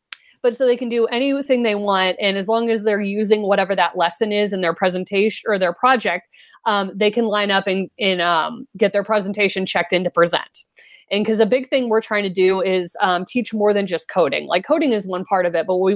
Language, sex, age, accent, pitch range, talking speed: English, female, 30-49, American, 170-210 Hz, 240 wpm